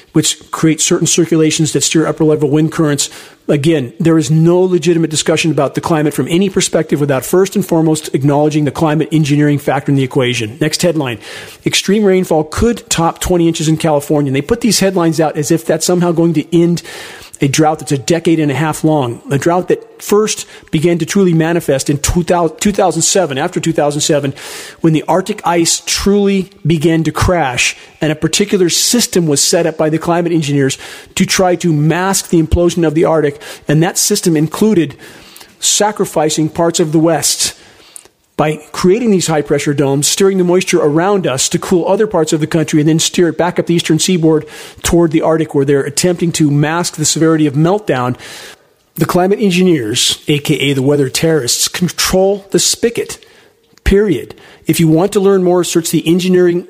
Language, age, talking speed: English, 40-59, 180 wpm